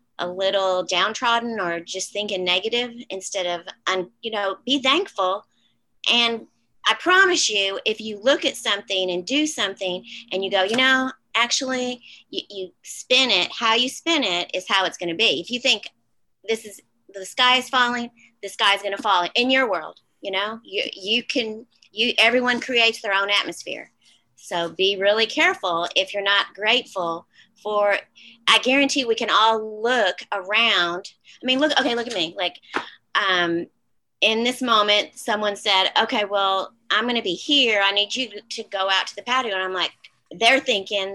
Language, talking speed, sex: English, 185 wpm, female